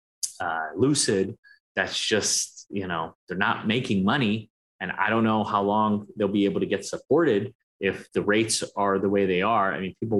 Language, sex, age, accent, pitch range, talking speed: English, male, 30-49, American, 100-125 Hz, 195 wpm